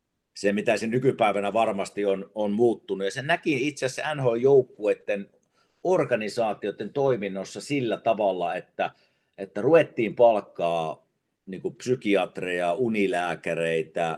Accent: native